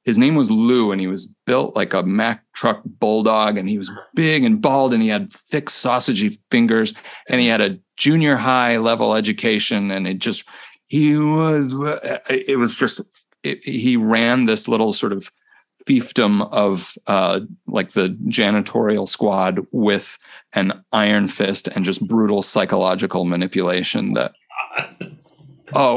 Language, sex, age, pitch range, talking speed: English, male, 40-59, 100-145 Hz, 150 wpm